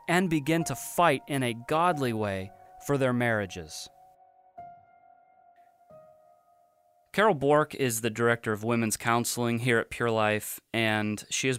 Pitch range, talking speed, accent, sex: 105-130 Hz, 135 wpm, American, male